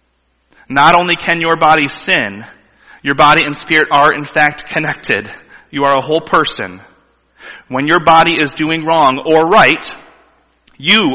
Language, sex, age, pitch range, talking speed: English, male, 30-49, 120-160 Hz, 150 wpm